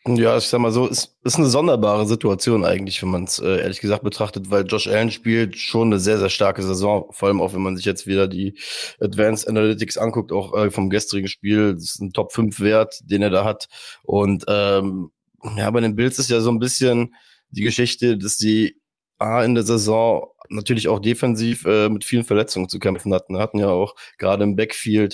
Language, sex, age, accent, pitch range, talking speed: German, male, 20-39, German, 105-120 Hz, 210 wpm